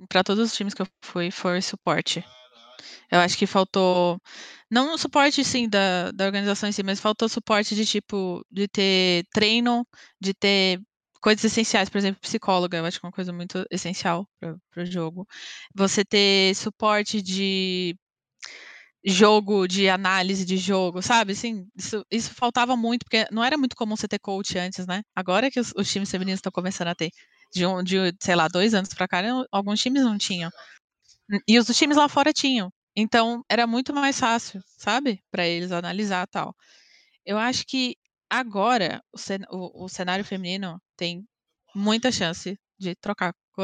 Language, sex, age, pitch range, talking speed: Portuguese, female, 20-39, 180-225 Hz, 175 wpm